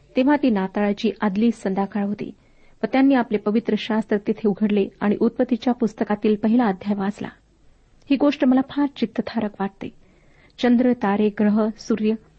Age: 50-69